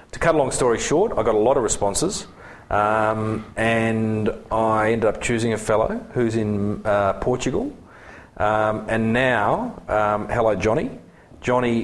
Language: English